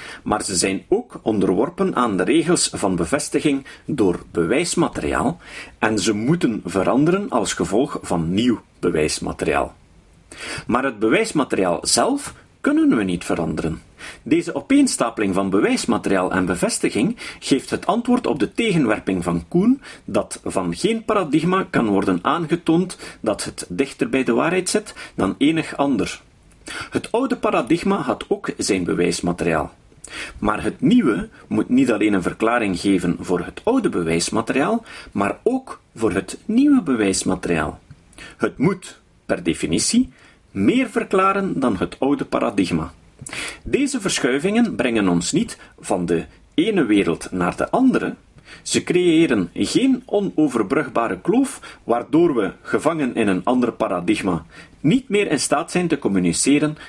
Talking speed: 135 wpm